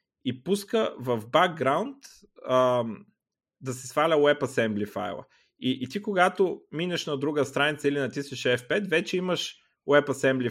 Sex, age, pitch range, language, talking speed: male, 30-49, 120-160 Hz, Bulgarian, 130 wpm